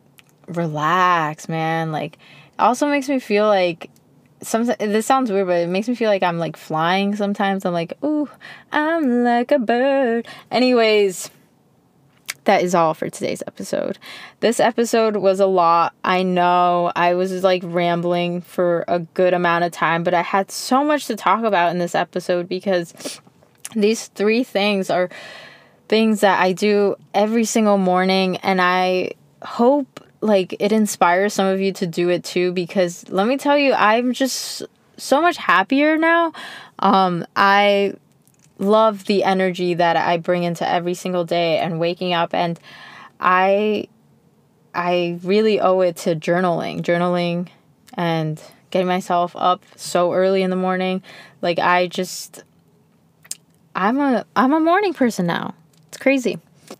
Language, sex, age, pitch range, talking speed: English, female, 20-39, 175-215 Hz, 155 wpm